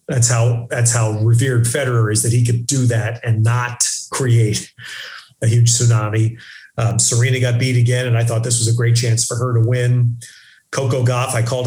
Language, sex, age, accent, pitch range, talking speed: English, male, 40-59, American, 115-125 Hz, 200 wpm